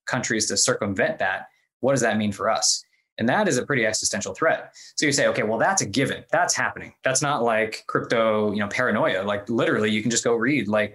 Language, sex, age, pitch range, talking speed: English, male, 20-39, 105-130 Hz, 230 wpm